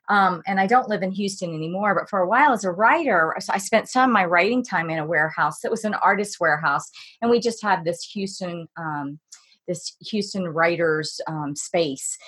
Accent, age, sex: American, 30-49, female